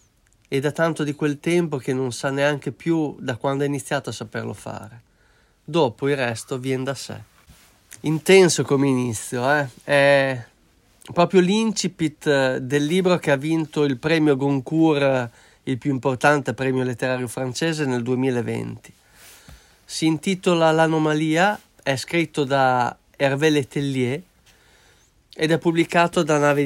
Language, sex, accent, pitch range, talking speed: Italian, male, native, 130-170 Hz, 135 wpm